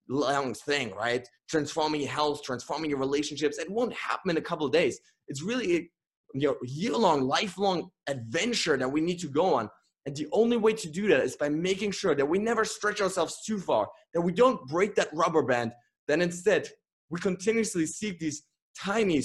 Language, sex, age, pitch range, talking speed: English, male, 20-39, 145-200 Hz, 190 wpm